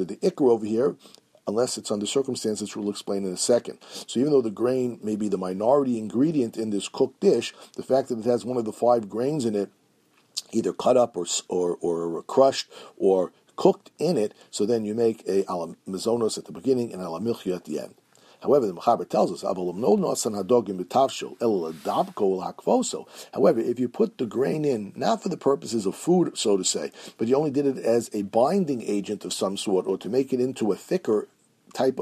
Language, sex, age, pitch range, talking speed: English, male, 50-69, 95-125 Hz, 200 wpm